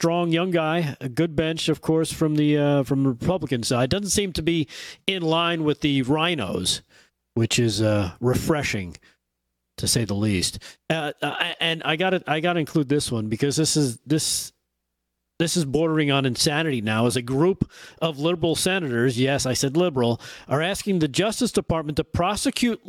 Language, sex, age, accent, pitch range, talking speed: English, male, 40-59, American, 145-185 Hz, 185 wpm